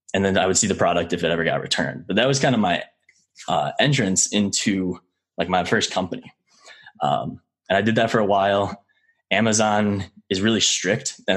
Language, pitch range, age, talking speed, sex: English, 90-115 Hz, 10-29, 200 wpm, male